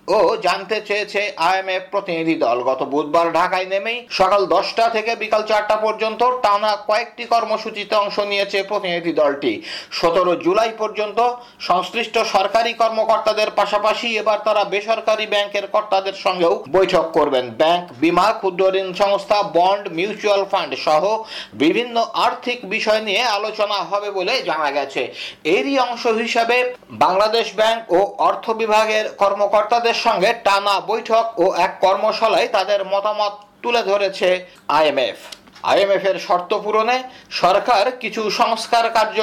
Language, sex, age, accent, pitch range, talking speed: Bengali, male, 50-69, native, 195-225 Hz, 65 wpm